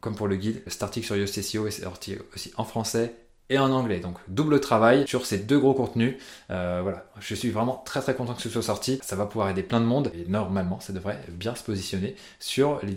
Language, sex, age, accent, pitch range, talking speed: French, male, 20-39, French, 105-130 Hz, 235 wpm